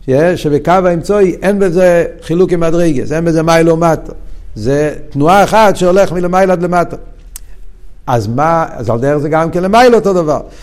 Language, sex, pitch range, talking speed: Hebrew, male, 115-165 Hz, 180 wpm